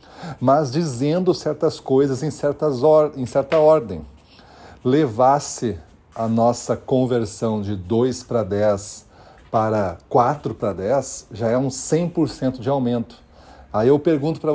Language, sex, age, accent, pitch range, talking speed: Portuguese, male, 40-59, Brazilian, 110-140 Hz, 130 wpm